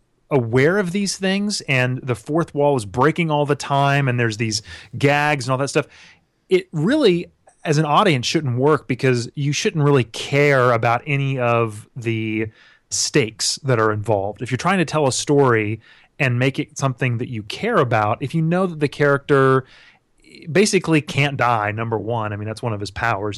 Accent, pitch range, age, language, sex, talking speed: American, 115-145 Hz, 30-49, English, male, 190 wpm